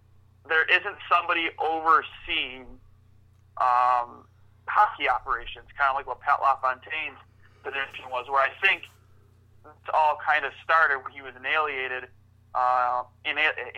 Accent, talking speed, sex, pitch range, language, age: American, 120 wpm, male, 105-145 Hz, English, 30-49